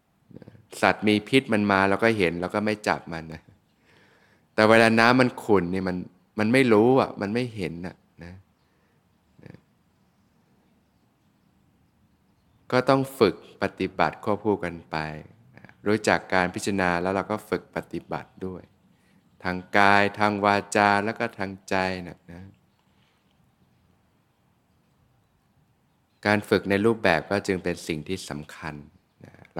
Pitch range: 90-105 Hz